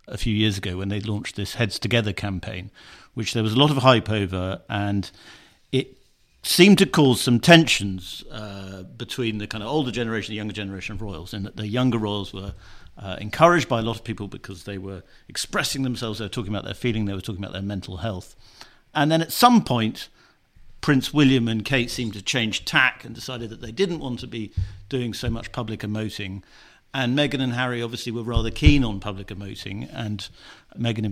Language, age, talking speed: English, 50-69, 210 wpm